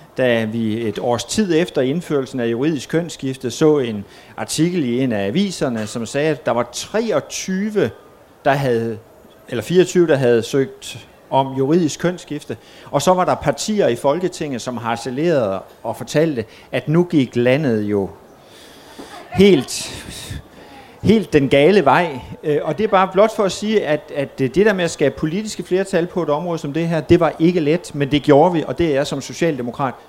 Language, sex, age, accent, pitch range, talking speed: Danish, male, 30-49, native, 125-170 Hz, 180 wpm